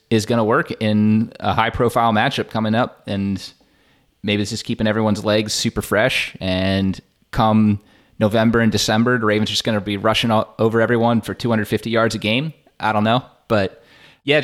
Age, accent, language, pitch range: 20-39, American, English, 100-115 Hz